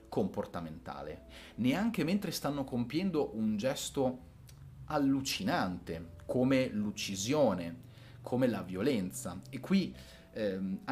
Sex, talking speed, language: male, 90 wpm, Italian